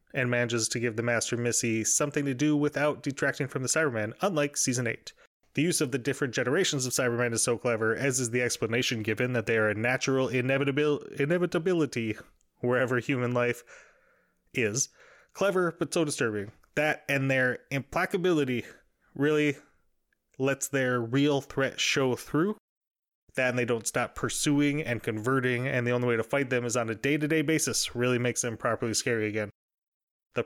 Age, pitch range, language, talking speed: 20-39, 120-145 Hz, English, 170 wpm